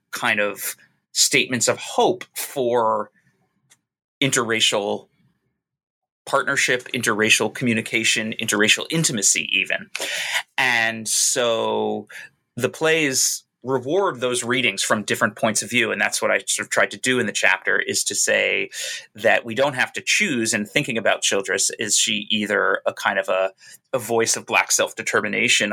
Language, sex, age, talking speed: English, male, 30-49, 145 wpm